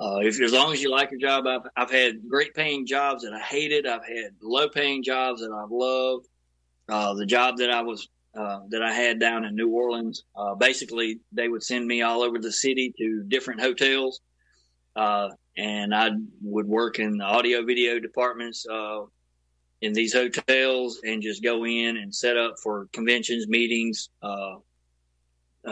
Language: English